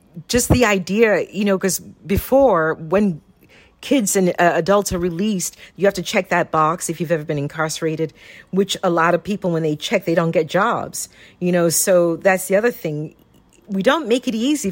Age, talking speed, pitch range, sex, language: 50-69, 200 wpm, 160-195 Hz, female, English